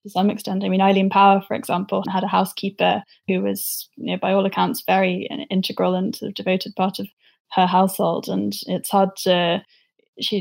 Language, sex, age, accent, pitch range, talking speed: English, female, 10-29, British, 185-210 Hz, 195 wpm